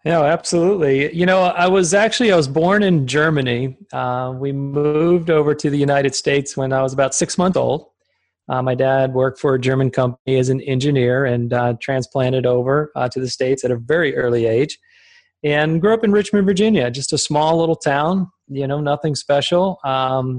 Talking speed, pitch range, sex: 195 wpm, 130-165 Hz, male